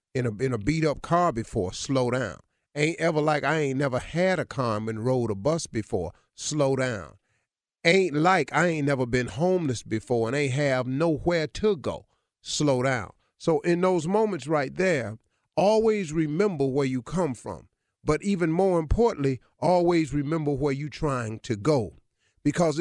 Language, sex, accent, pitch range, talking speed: English, male, American, 120-155 Hz, 175 wpm